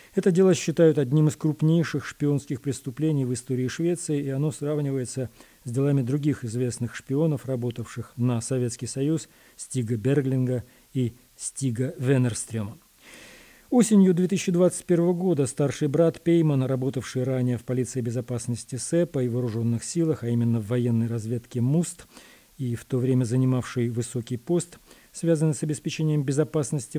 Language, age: Russian, 40-59